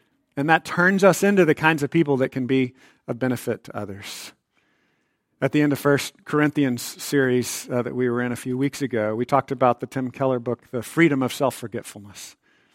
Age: 50-69